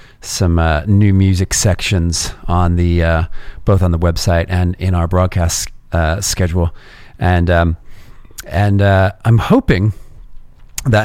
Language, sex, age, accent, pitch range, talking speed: English, male, 40-59, American, 90-115 Hz, 135 wpm